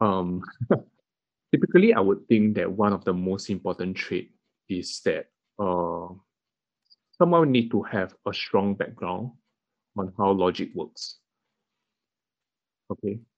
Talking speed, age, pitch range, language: 120 wpm, 20-39, 90-110 Hz, English